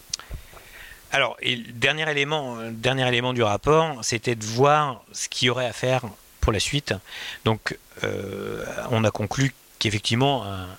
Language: French